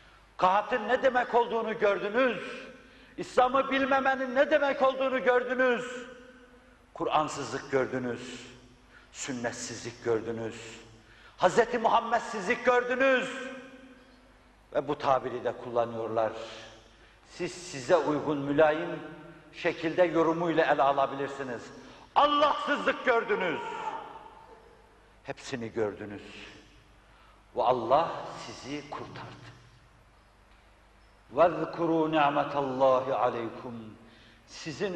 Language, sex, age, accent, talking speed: Turkish, male, 60-79, native, 75 wpm